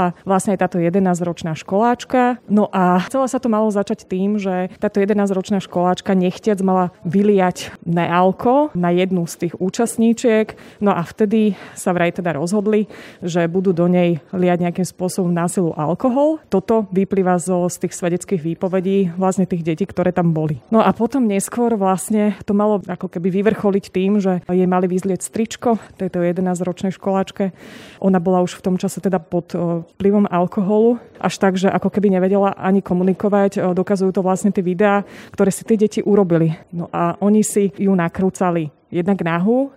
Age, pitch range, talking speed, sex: 20-39, 180-205 Hz, 165 wpm, female